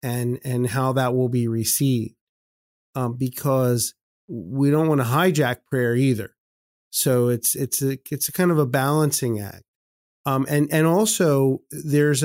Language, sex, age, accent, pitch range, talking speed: English, male, 30-49, American, 120-145 Hz, 155 wpm